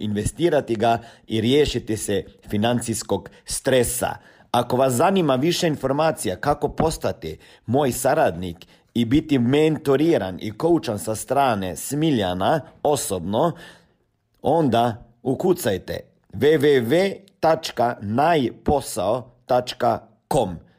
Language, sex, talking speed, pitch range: Croatian, male, 80 wpm, 120-185 Hz